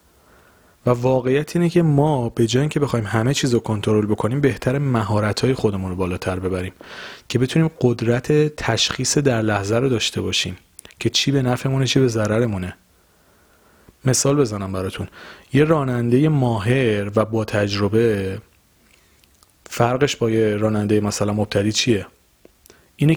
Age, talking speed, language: 30-49, 130 wpm, Persian